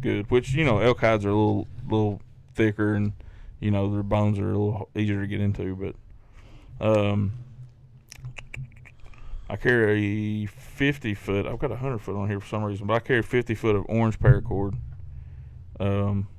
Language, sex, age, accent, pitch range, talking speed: English, male, 20-39, American, 100-120 Hz, 180 wpm